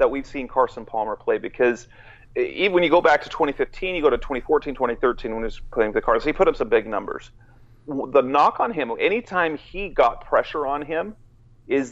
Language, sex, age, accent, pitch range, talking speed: English, male, 40-59, American, 120-180 Hz, 210 wpm